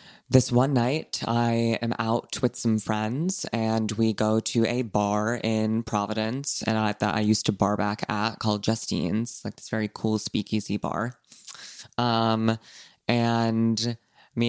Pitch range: 110-120 Hz